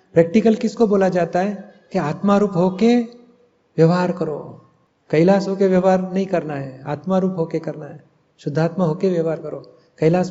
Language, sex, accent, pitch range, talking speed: Hindi, male, native, 165-185 Hz, 165 wpm